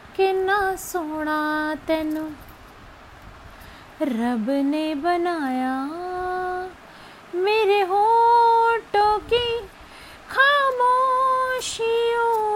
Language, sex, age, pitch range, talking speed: Hindi, female, 20-39, 335-420 Hz, 50 wpm